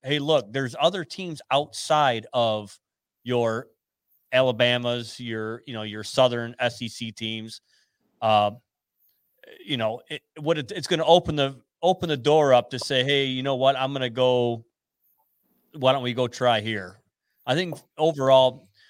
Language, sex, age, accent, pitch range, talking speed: English, male, 30-49, American, 115-140 Hz, 160 wpm